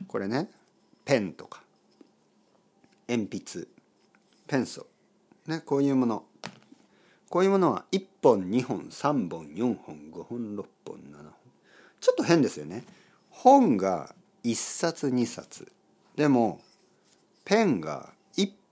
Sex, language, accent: male, Japanese, native